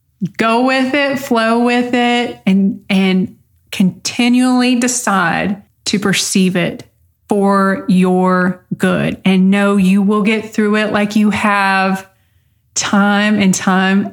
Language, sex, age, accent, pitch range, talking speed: English, female, 30-49, American, 180-215 Hz, 125 wpm